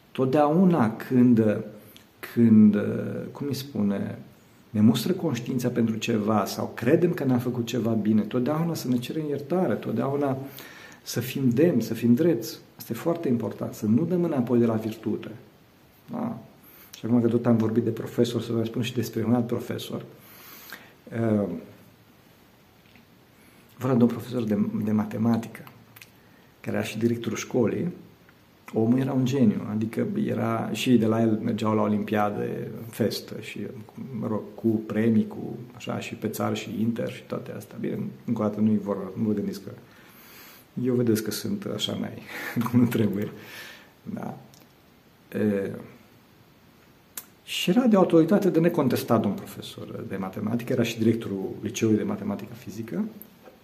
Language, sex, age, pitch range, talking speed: Romanian, male, 50-69, 110-130 Hz, 155 wpm